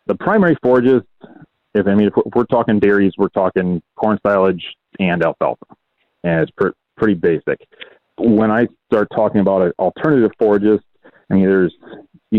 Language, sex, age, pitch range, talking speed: English, male, 30-49, 85-105 Hz, 155 wpm